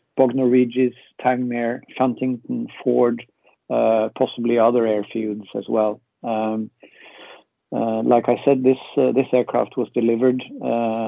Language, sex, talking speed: English, male, 120 wpm